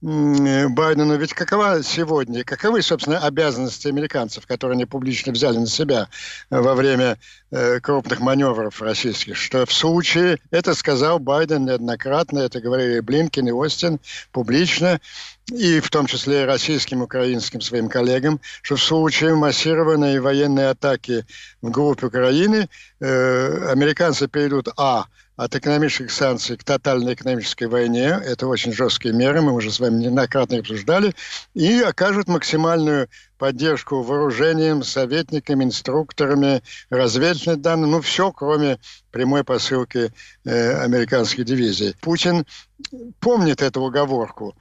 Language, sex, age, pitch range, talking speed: Ukrainian, male, 60-79, 125-155 Hz, 125 wpm